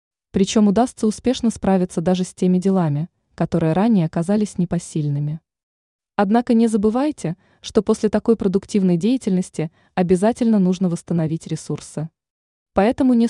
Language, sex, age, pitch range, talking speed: Russian, female, 20-39, 170-220 Hz, 115 wpm